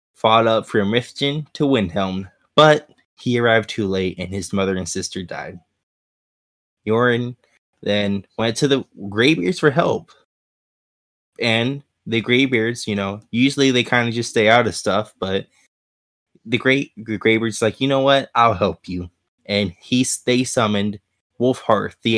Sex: male